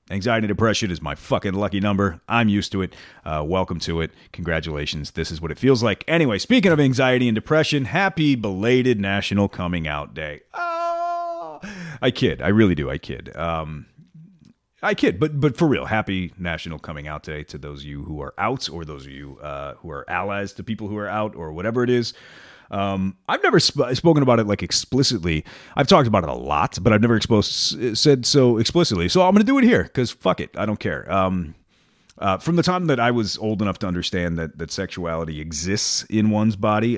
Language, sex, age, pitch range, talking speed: English, male, 30-49, 85-125 Hz, 215 wpm